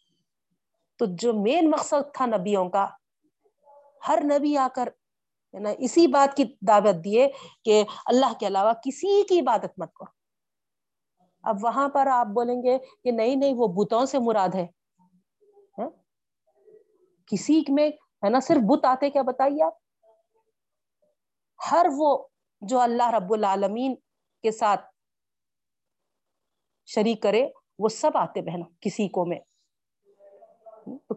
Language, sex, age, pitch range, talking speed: Urdu, female, 40-59, 210-285 Hz, 135 wpm